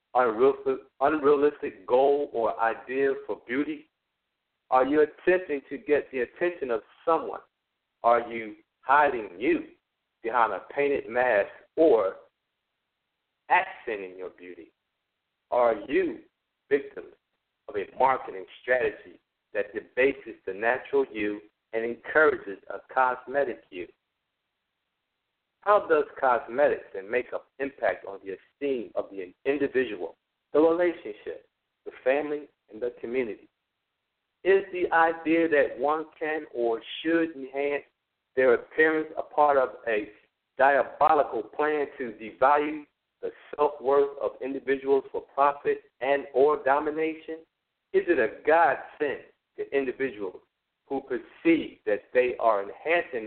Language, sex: English, male